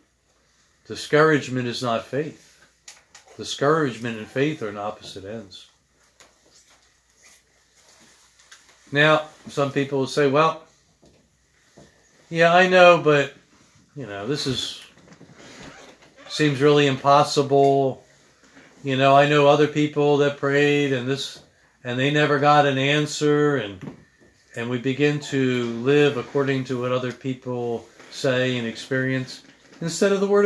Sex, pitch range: male, 125-175 Hz